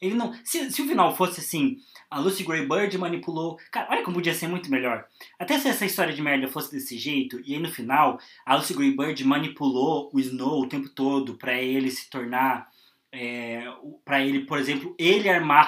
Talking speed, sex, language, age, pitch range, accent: 190 wpm, male, Portuguese, 20-39, 130-180 Hz, Brazilian